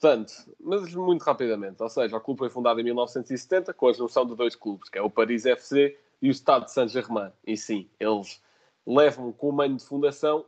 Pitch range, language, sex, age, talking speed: 115-155 Hz, Portuguese, male, 20-39, 220 wpm